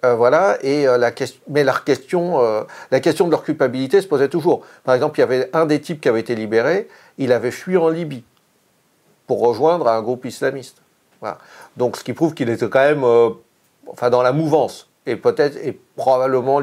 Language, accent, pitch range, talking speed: French, French, 125-180 Hz, 210 wpm